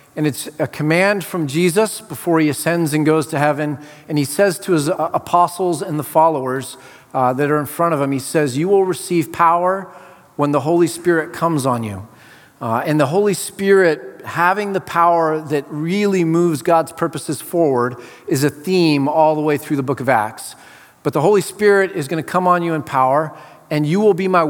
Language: English